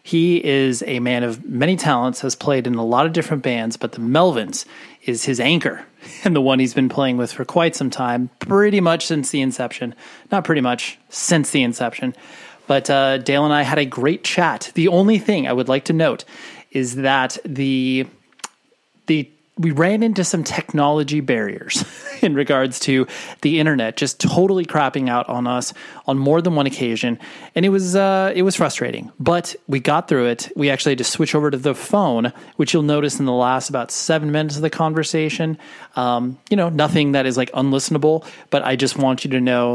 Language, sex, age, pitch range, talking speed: English, male, 30-49, 130-170 Hz, 200 wpm